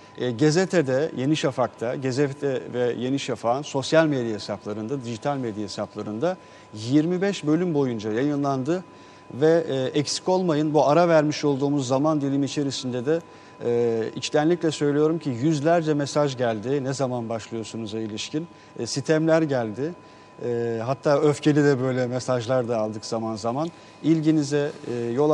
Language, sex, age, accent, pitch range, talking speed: Turkish, male, 40-59, native, 120-150 Hz, 135 wpm